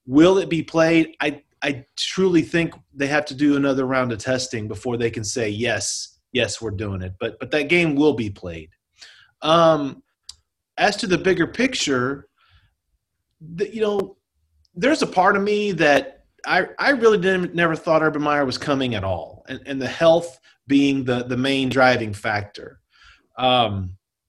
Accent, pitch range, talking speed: American, 130-170 Hz, 175 wpm